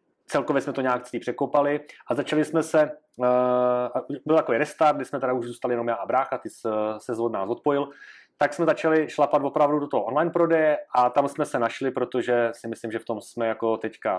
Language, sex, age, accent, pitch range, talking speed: Czech, male, 30-49, native, 120-145 Hz, 215 wpm